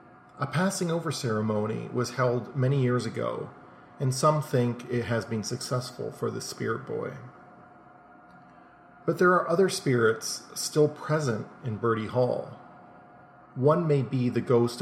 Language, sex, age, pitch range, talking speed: English, male, 40-59, 120-145 Hz, 140 wpm